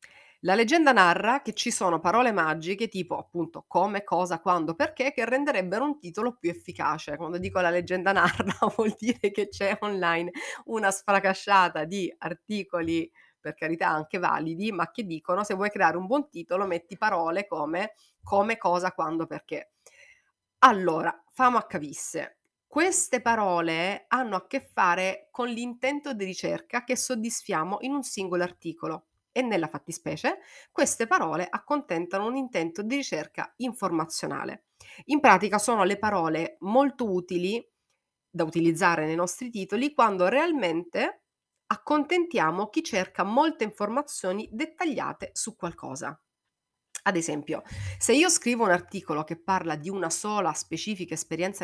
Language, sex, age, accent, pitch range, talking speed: Italian, female, 30-49, native, 170-240 Hz, 140 wpm